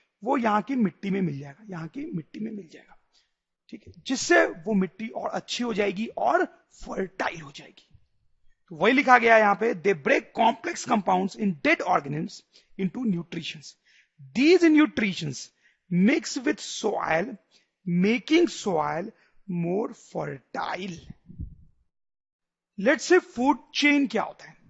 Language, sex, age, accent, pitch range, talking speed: English, male, 40-59, Indian, 185-240 Hz, 135 wpm